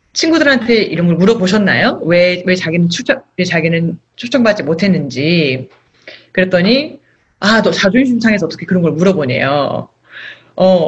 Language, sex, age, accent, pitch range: Korean, female, 30-49, native, 170-245 Hz